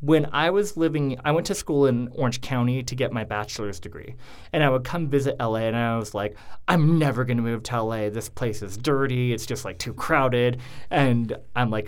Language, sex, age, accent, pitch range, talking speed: English, male, 30-49, American, 110-145 Hz, 225 wpm